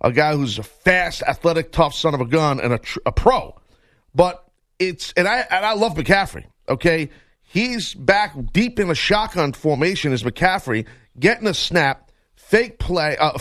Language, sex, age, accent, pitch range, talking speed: English, male, 40-59, American, 150-215 Hz, 180 wpm